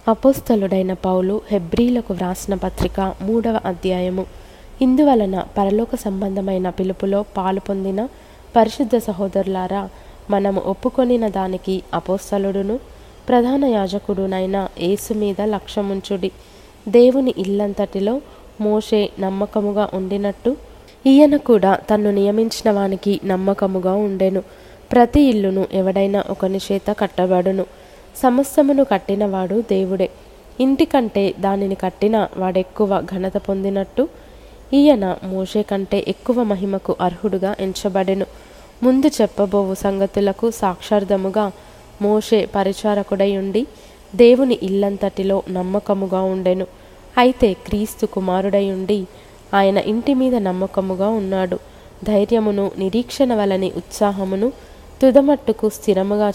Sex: female